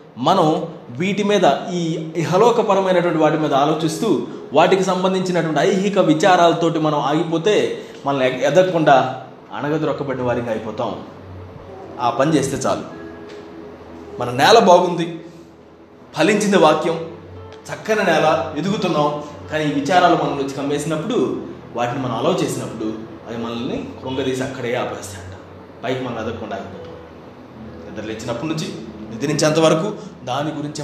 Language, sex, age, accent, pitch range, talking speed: Telugu, male, 20-39, native, 130-180 Hz, 105 wpm